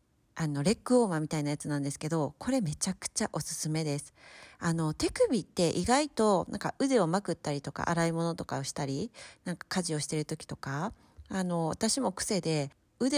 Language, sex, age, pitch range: Japanese, female, 40-59, 160-245 Hz